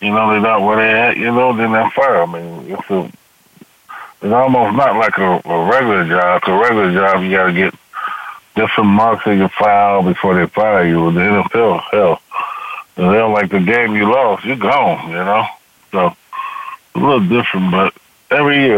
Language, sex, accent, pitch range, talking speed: English, male, American, 100-125 Hz, 200 wpm